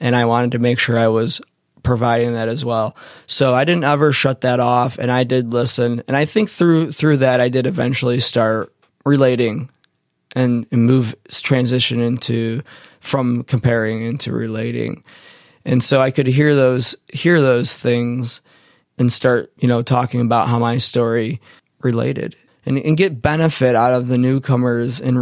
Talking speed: 170 wpm